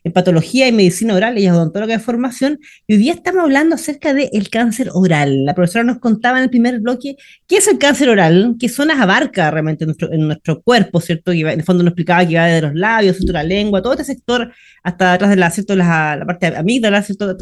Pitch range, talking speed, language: 190-255 Hz, 240 wpm, Spanish